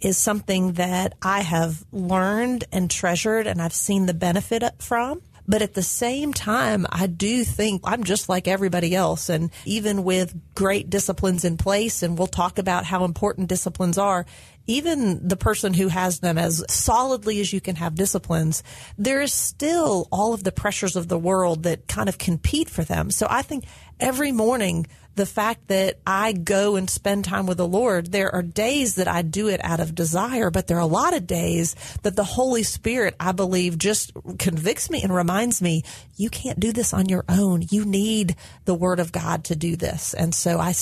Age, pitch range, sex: 40-59, 175-210 Hz, female